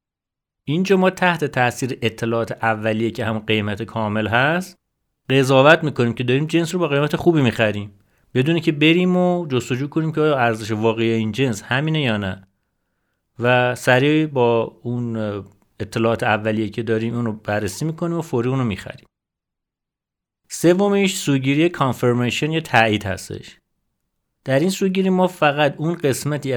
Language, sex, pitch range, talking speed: Persian, male, 110-150 Hz, 140 wpm